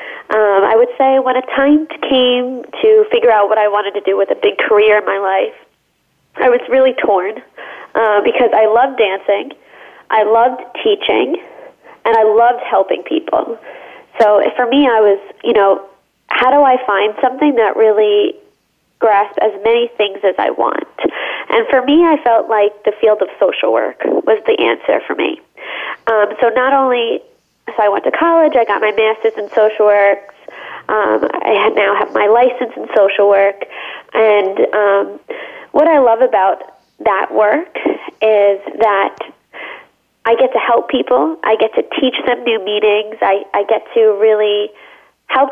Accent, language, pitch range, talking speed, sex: American, English, 210-285 Hz, 170 wpm, female